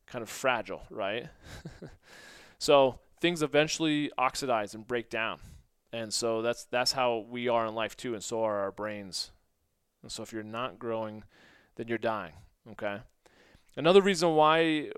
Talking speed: 155 wpm